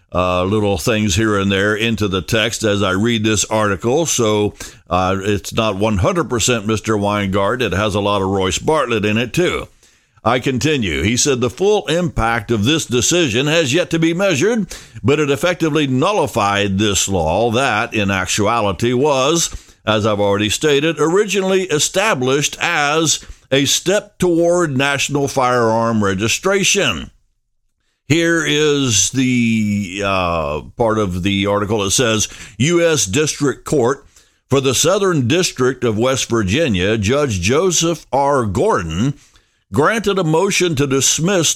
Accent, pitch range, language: American, 105-150 Hz, English